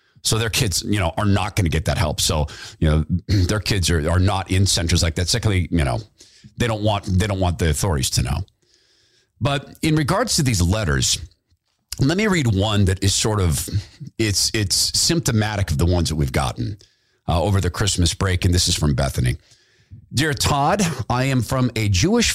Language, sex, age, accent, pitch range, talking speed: English, male, 50-69, American, 95-125 Hz, 205 wpm